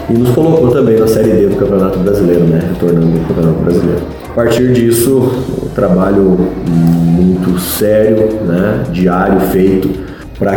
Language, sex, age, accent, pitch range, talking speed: Portuguese, male, 30-49, Brazilian, 90-110 Hz, 150 wpm